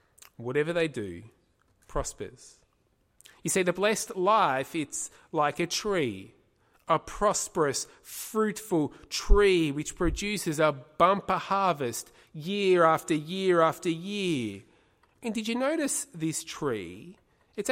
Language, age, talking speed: English, 30-49, 115 wpm